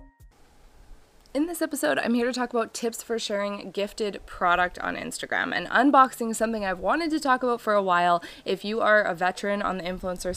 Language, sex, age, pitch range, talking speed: English, female, 20-39, 180-235 Hz, 205 wpm